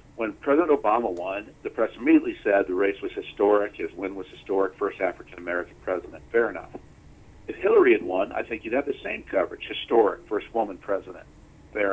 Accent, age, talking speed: American, 50-69, 185 wpm